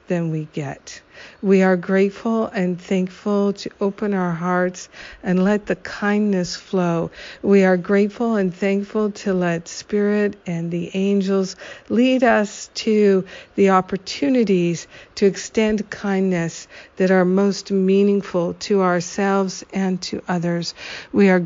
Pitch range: 180-205 Hz